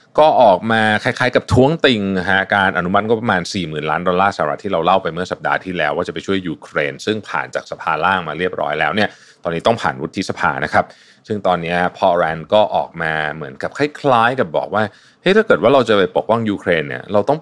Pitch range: 85-110 Hz